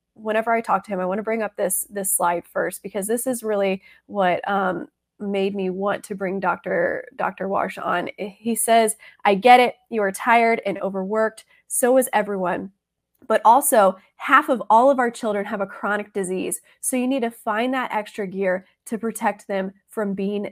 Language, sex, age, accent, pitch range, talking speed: English, female, 20-39, American, 200-235 Hz, 195 wpm